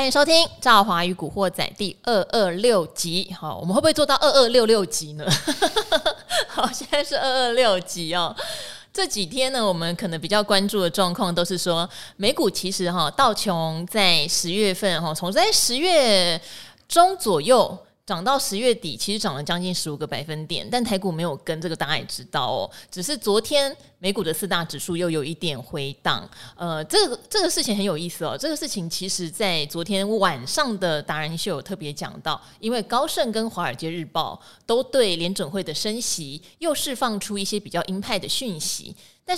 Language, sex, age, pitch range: Chinese, female, 20-39, 165-235 Hz